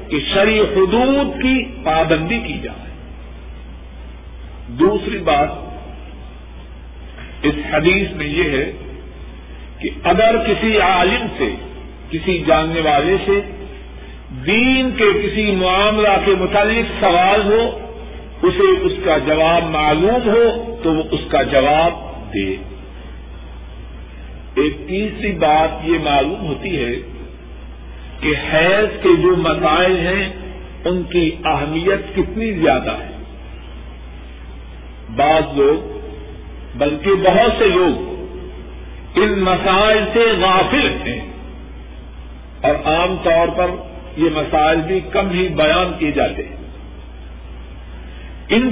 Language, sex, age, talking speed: Urdu, male, 50-69, 105 wpm